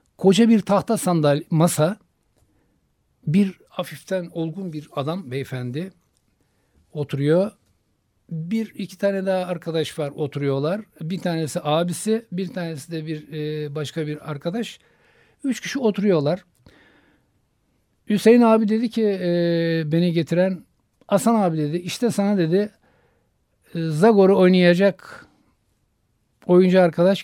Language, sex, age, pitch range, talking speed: Turkish, male, 60-79, 150-195 Hz, 105 wpm